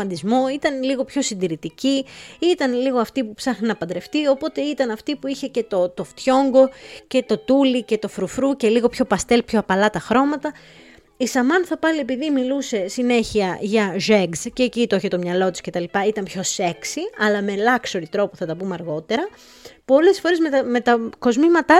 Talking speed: 185 wpm